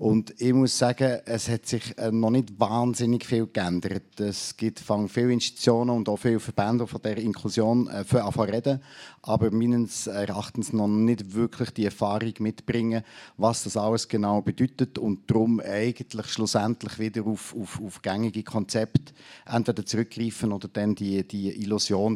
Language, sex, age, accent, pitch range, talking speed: German, male, 50-69, Austrian, 105-120 Hz, 155 wpm